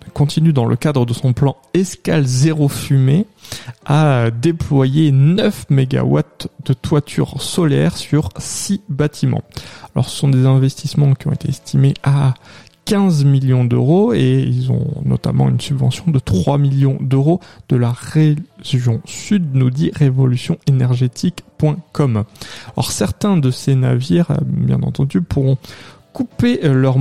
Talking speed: 135 wpm